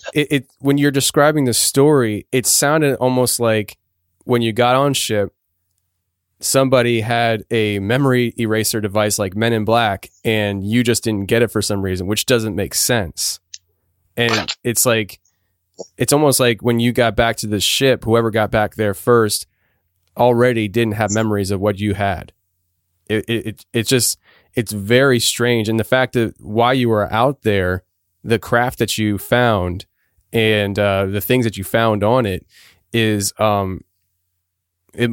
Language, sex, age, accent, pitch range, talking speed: English, male, 20-39, American, 100-120 Hz, 170 wpm